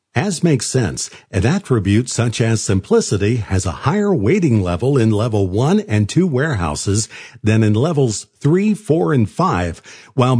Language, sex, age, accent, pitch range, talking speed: English, male, 50-69, American, 105-165 Hz, 155 wpm